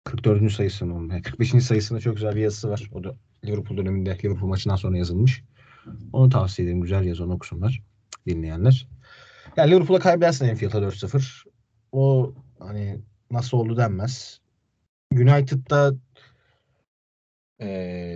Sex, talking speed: male, 130 wpm